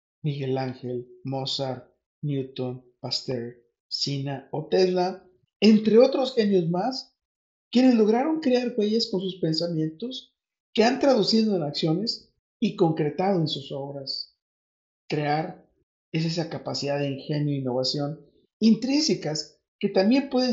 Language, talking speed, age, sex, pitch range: Spanish, 120 wpm, 50-69, male, 140-190 Hz